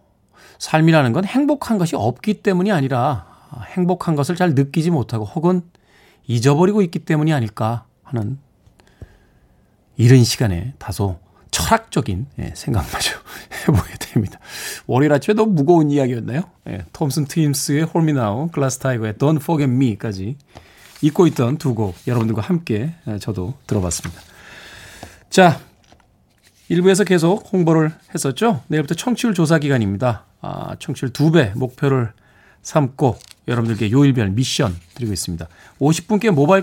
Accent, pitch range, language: native, 110-165 Hz, Korean